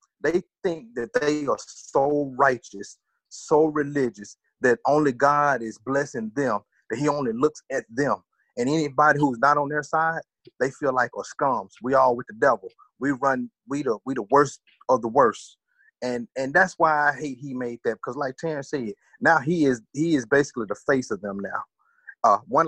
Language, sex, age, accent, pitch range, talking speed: English, male, 30-49, American, 120-150 Hz, 195 wpm